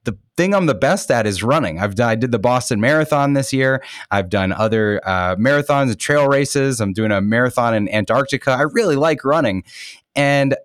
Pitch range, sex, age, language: 110-140 Hz, male, 20-39, English